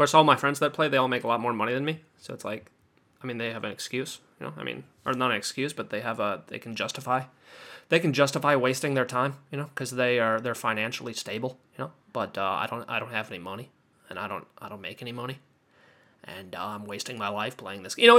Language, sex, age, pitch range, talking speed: English, male, 20-39, 125-145 Hz, 275 wpm